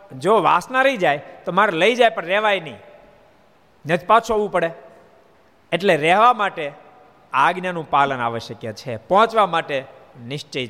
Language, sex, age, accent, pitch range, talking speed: Gujarati, male, 50-69, native, 150-205 Hz, 140 wpm